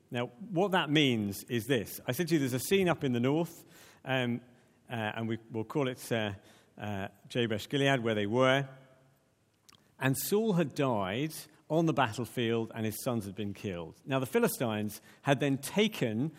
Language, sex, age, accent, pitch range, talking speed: English, male, 50-69, British, 115-155 Hz, 175 wpm